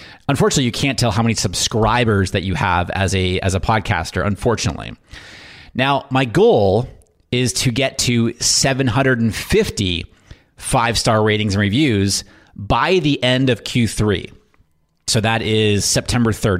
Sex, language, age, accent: male, English, 30-49, American